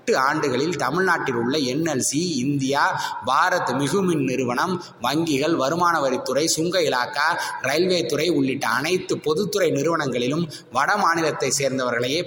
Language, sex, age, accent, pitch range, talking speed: Tamil, male, 20-39, native, 130-175 Hz, 110 wpm